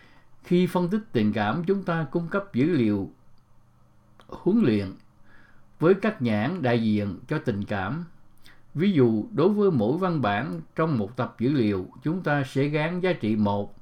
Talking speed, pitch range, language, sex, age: 175 wpm, 115-160 Hz, English, male, 60-79